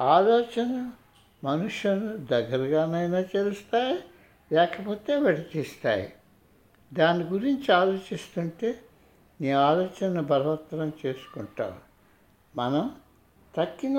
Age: 60-79